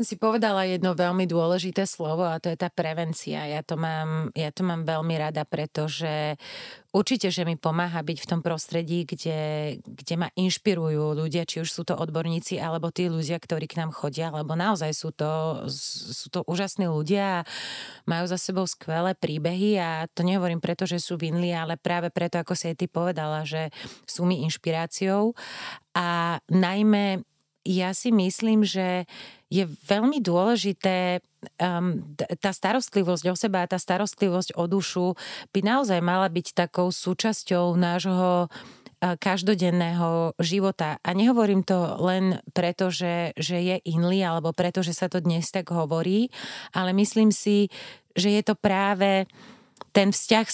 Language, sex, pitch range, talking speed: Slovak, female, 165-195 Hz, 155 wpm